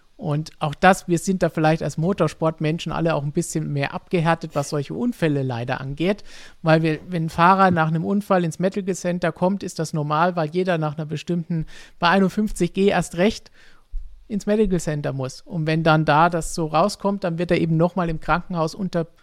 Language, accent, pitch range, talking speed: German, German, 150-175 Hz, 200 wpm